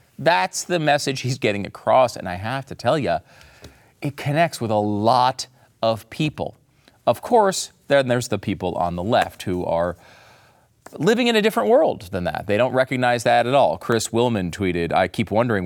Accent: American